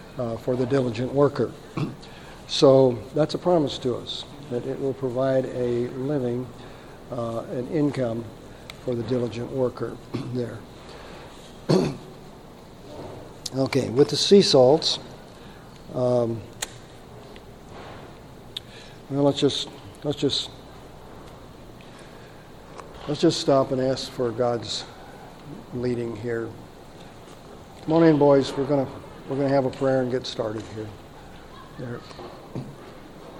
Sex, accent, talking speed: male, American, 105 wpm